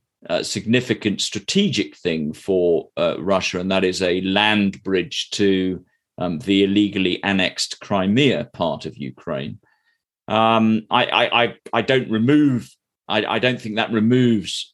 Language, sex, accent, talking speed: English, male, British, 140 wpm